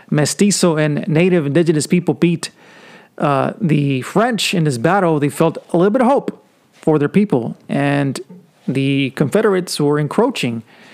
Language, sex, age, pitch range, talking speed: English, male, 30-49, 145-180 Hz, 150 wpm